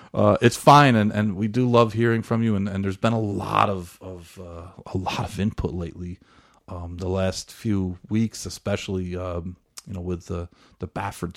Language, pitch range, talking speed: English, 95-120 Hz, 205 wpm